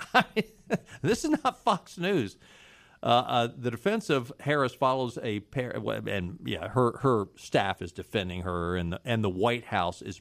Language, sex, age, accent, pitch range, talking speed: English, male, 50-69, American, 90-125 Hz, 170 wpm